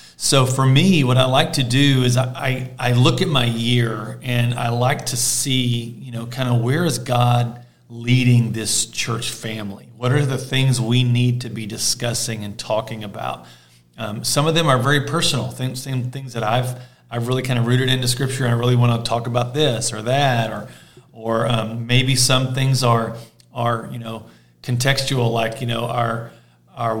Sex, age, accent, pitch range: male, 40-59, American, 115-130 Hz